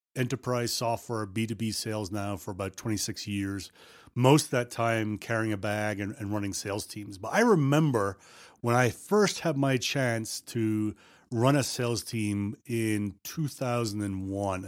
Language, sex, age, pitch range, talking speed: English, male, 30-49, 110-135 Hz, 150 wpm